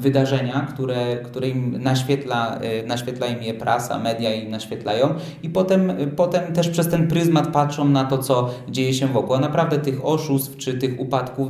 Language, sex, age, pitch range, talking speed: Polish, male, 20-39, 120-140 Hz, 170 wpm